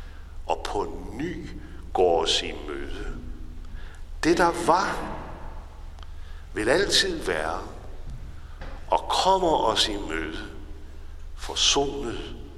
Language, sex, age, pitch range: Danish, male, 60-79, 75-80 Hz